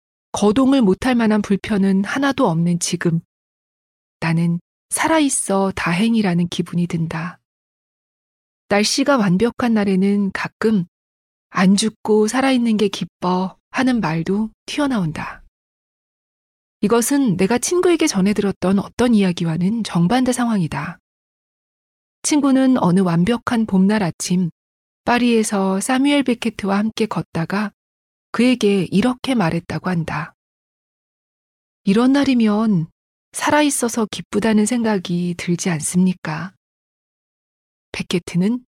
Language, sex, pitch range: Korean, female, 175-235 Hz